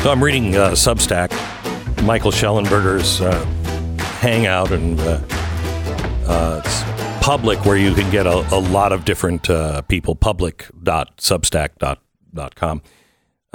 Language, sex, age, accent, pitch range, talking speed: English, male, 60-79, American, 95-115 Hz, 115 wpm